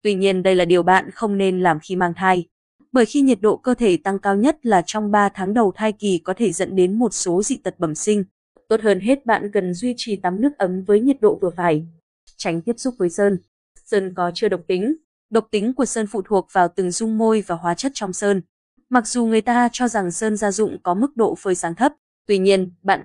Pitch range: 185-235 Hz